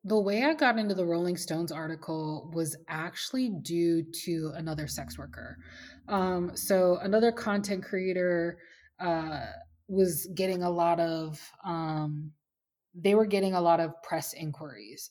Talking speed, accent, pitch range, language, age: 145 wpm, American, 155-180 Hz, English, 20-39